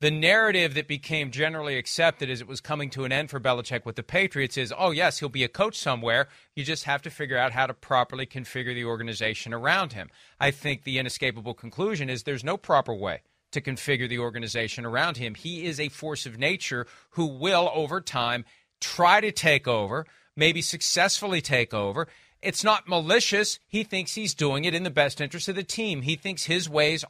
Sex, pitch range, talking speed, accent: male, 140-185 Hz, 205 wpm, American